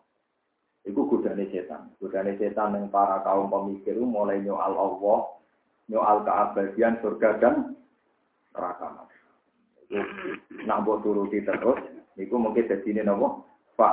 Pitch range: 100-130 Hz